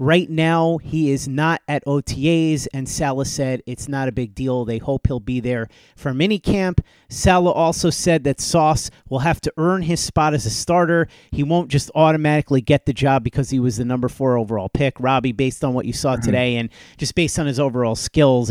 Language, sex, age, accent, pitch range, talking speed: English, male, 30-49, American, 130-160 Hz, 210 wpm